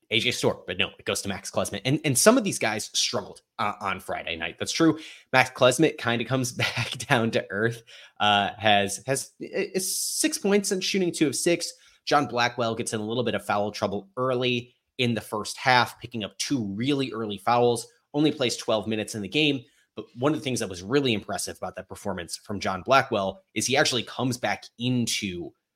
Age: 20-39